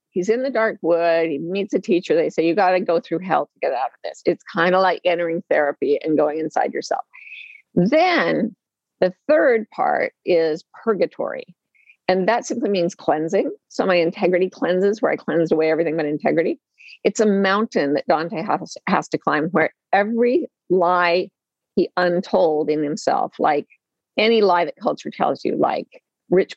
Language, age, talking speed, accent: English, 50-69, 175 wpm, American